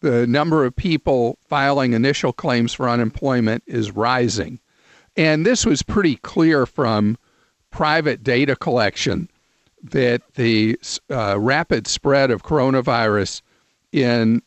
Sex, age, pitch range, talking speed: male, 50-69, 115-145 Hz, 115 wpm